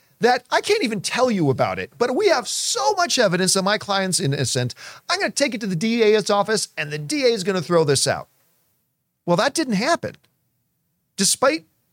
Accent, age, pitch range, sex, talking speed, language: American, 40-59, 150-215 Hz, male, 195 wpm, English